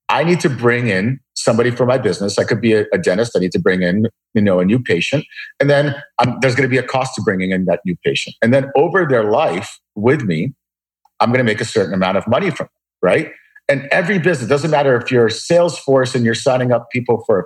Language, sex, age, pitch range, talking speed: English, male, 50-69, 100-130 Hz, 260 wpm